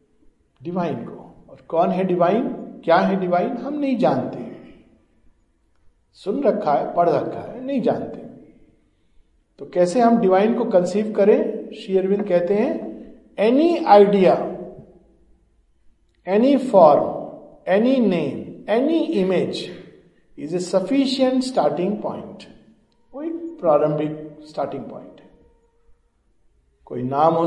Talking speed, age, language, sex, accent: 115 wpm, 50-69, Hindi, male, native